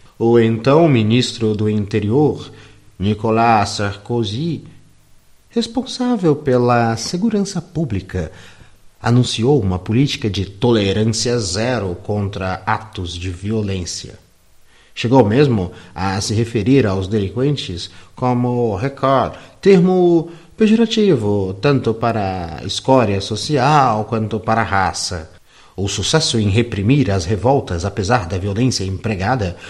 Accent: Brazilian